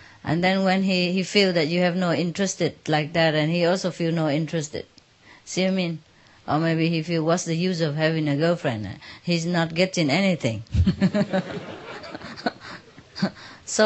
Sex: female